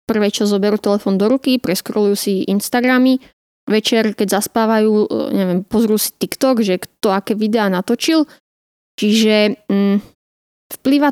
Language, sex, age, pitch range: Slovak, female, 20-39, 200-230 Hz